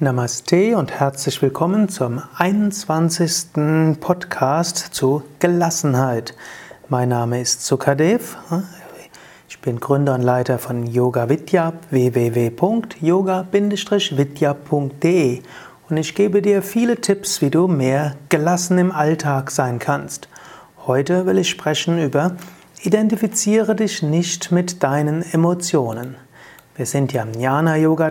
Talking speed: 115 wpm